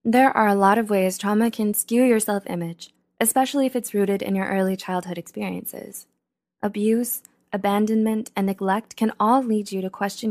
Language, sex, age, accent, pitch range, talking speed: English, female, 20-39, American, 190-230 Hz, 175 wpm